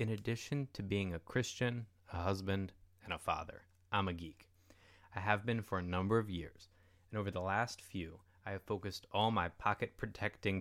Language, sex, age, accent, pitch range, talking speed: English, male, 20-39, American, 90-110 Hz, 185 wpm